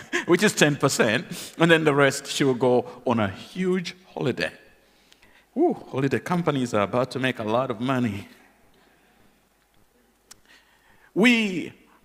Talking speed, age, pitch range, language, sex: 135 wpm, 50-69, 120-165 Hz, English, male